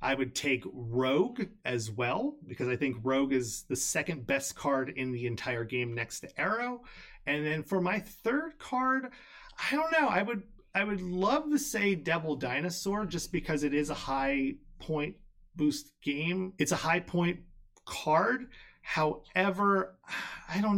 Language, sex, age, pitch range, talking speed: English, male, 30-49, 120-180 Hz, 165 wpm